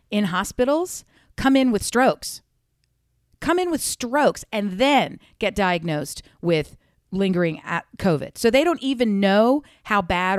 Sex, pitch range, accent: female, 165-235 Hz, American